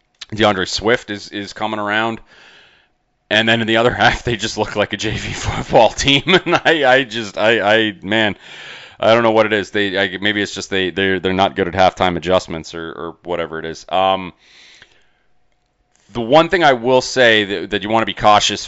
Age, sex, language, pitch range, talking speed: 30-49, male, English, 85-110 Hz, 210 wpm